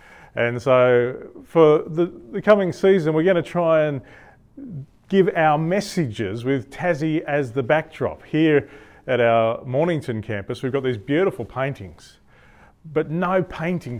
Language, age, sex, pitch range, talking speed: English, 40-59, male, 125-165 Hz, 140 wpm